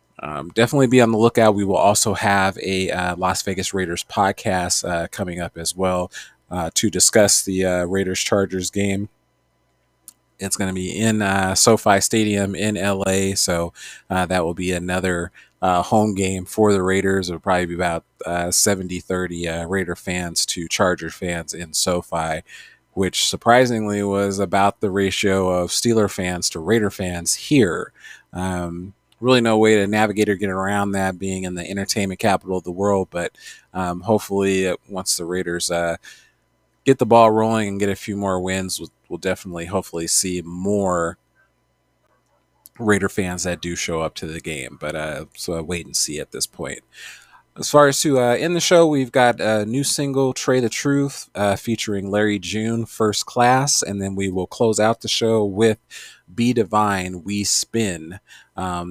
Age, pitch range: 30-49, 90-110 Hz